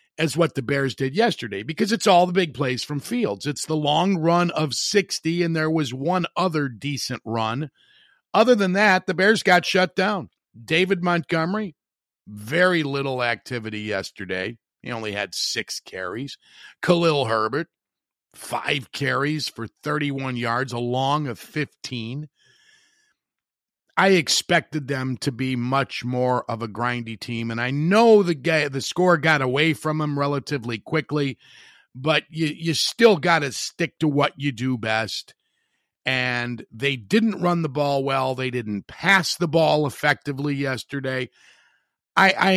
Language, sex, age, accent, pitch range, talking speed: English, male, 50-69, American, 125-175 Hz, 155 wpm